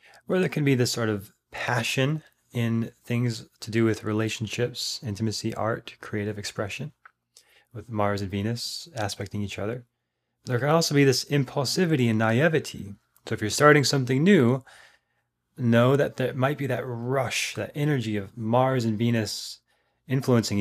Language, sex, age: English, male, 20-39